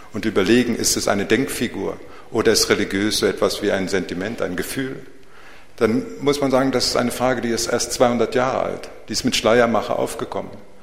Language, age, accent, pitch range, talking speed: German, 50-69, German, 115-135 Hz, 195 wpm